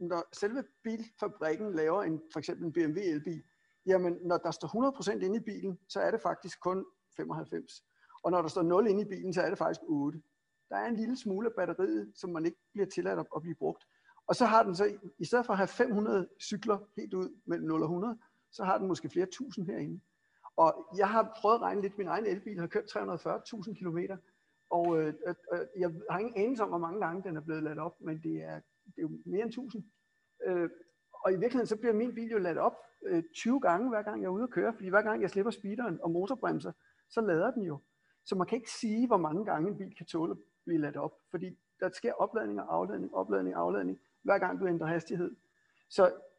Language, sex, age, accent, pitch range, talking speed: Danish, male, 60-79, native, 170-215 Hz, 230 wpm